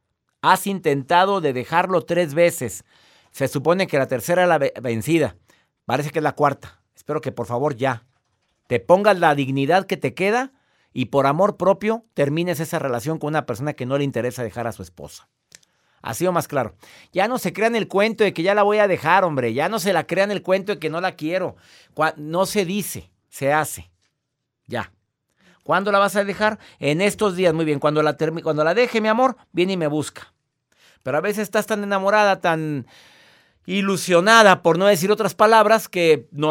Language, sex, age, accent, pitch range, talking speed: Spanish, male, 50-69, Mexican, 140-195 Hz, 200 wpm